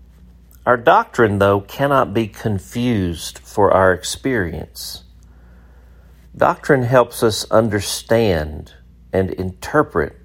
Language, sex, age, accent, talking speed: English, male, 50-69, American, 90 wpm